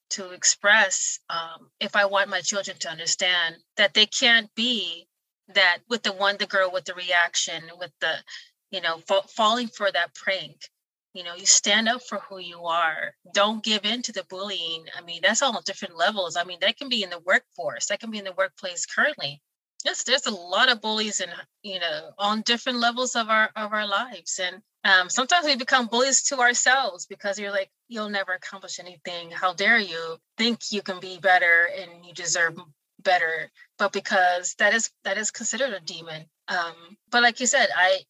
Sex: female